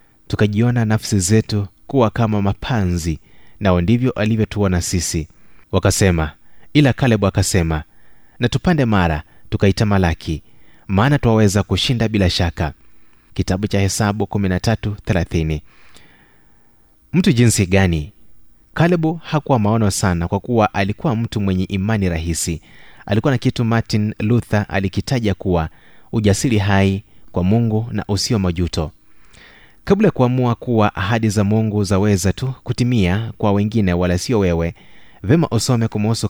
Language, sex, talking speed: Swahili, male, 120 wpm